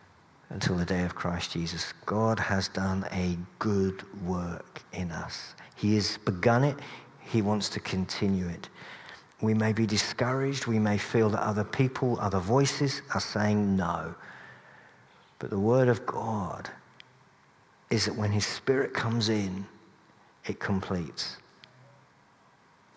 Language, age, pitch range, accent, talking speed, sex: English, 50-69, 95-115 Hz, British, 135 wpm, male